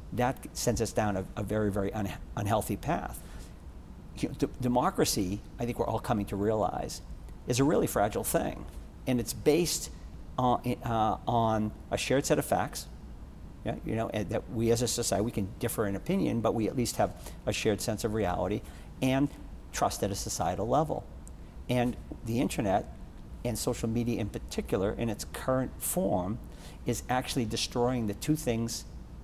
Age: 50-69